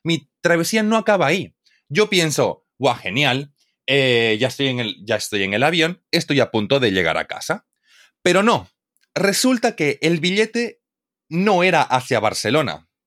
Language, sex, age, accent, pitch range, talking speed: Spanish, male, 30-49, Spanish, 115-185 Hz, 150 wpm